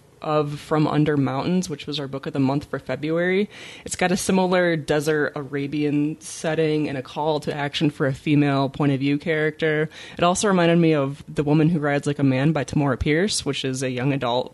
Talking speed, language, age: 215 wpm, English, 20-39